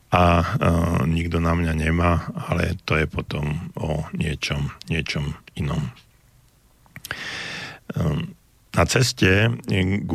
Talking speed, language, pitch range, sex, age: 105 wpm, Slovak, 80-90 Hz, male, 50-69